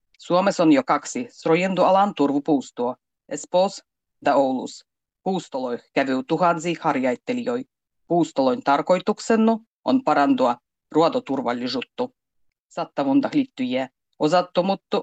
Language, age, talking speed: Finnish, 30-49, 85 wpm